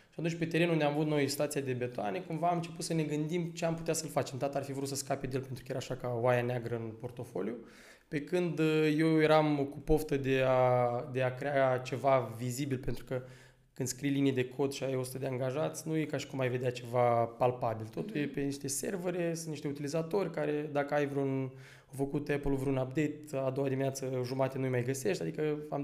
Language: Romanian